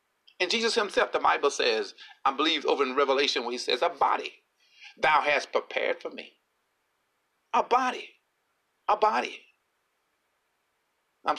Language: English